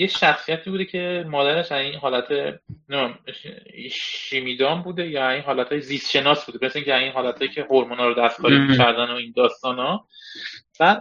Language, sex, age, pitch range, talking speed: Persian, male, 30-49, 135-180 Hz, 165 wpm